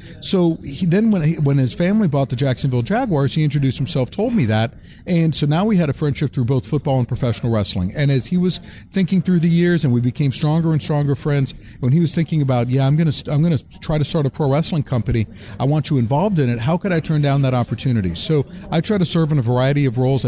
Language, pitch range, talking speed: English, 130-170 Hz, 260 wpm